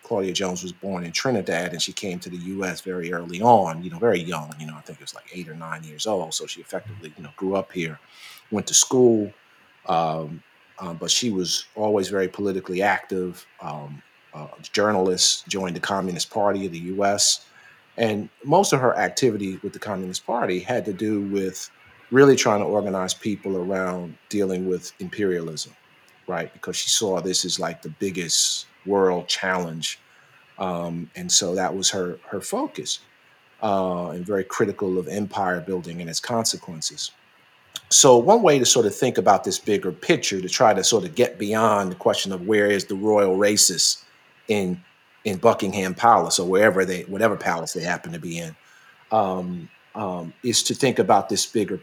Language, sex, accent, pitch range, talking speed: English, male, American, 90-105 Hz, 185 wpm